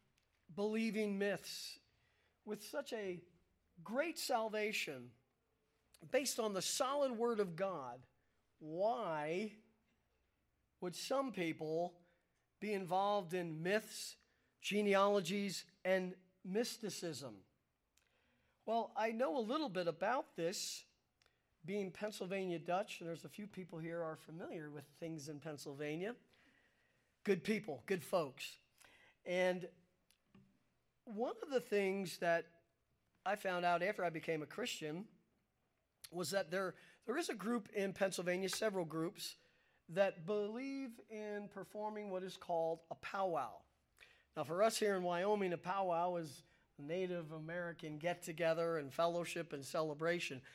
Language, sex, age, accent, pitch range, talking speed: English, male, 40-59, American, 165-210 Hz, 120 wpm